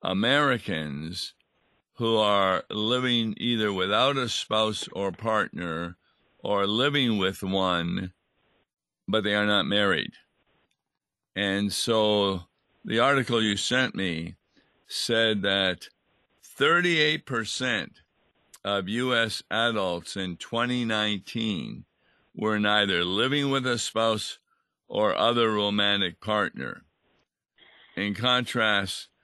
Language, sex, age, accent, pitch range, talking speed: English, male, 50-69, American, 95-115 Hz, 95 wpm